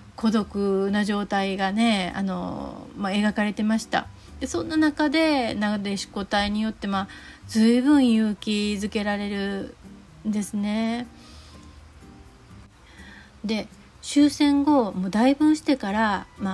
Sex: female